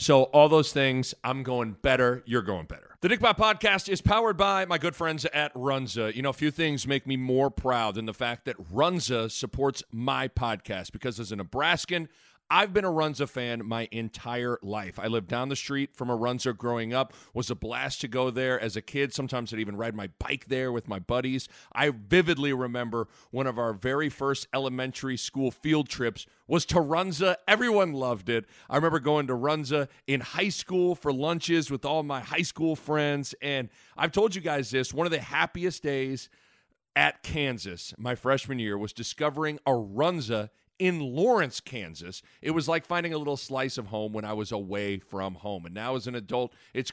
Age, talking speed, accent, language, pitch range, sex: 40-59, 205 wpm, American, English, 115-150 Hz, male